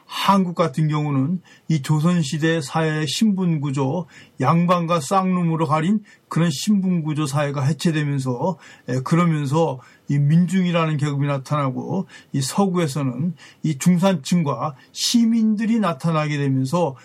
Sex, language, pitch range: male, Korean, 145-185 Hz